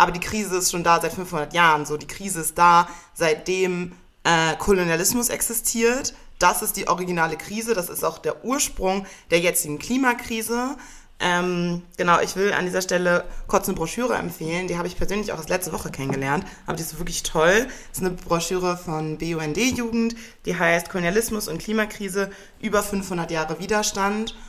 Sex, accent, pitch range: female, German, 160-195 Hz